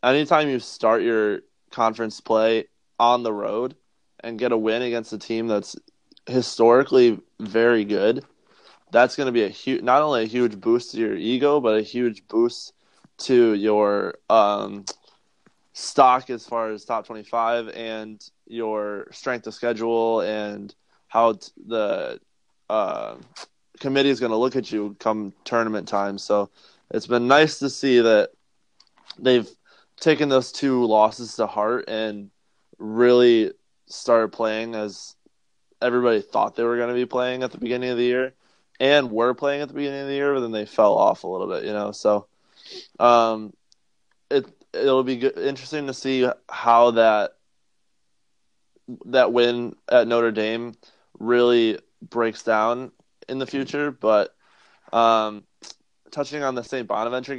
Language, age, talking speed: English, 20-39, 155 wpm